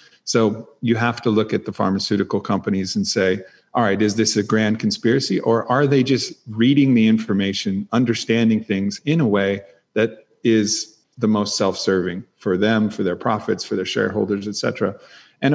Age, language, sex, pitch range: 40-59, English, male, 100-115 Hz